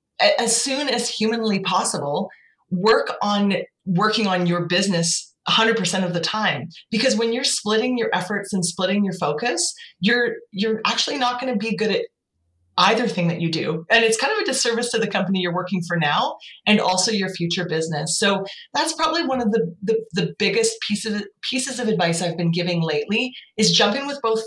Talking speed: 195 wpm